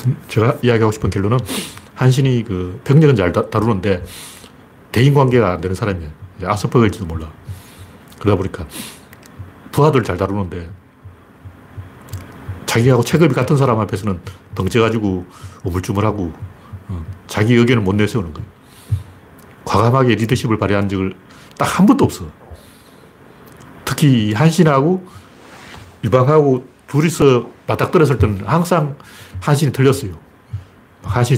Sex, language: male, Korean